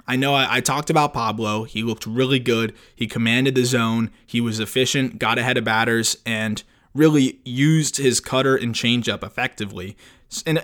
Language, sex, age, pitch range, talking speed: English, male, 20-39, 115-130 Hz, 175 wpm